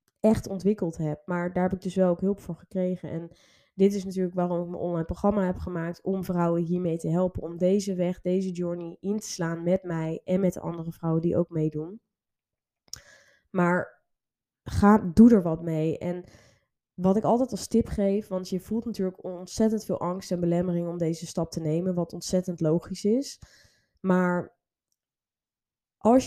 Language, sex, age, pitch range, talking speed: Dutch, female, 20-39, 175-205 Hz, 180 wpm